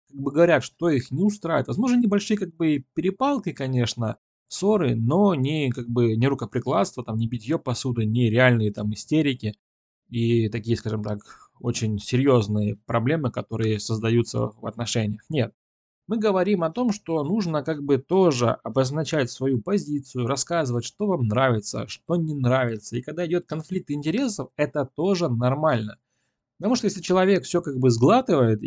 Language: Russian